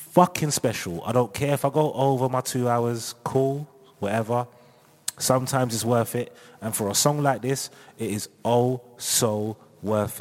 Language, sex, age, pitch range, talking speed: English, male, 30-49, 105-155 Hz, 170 wpm